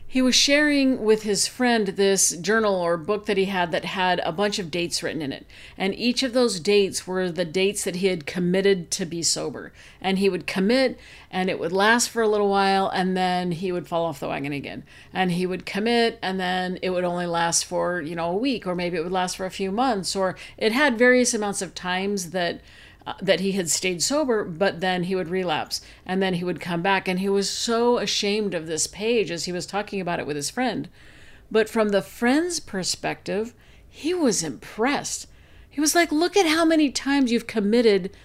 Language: English